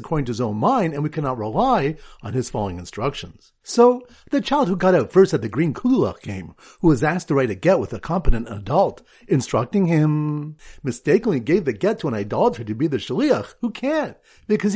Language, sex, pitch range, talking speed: English, male, 145-215 Hz, 210 wpm